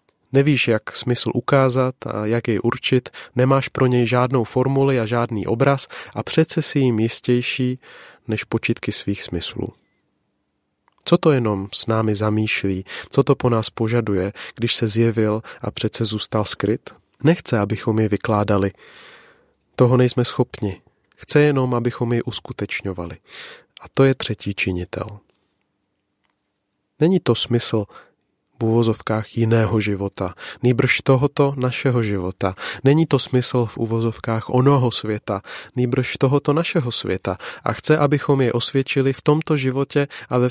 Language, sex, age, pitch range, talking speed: Czech, male, 30-49, 110-135 Hz, 135 wpm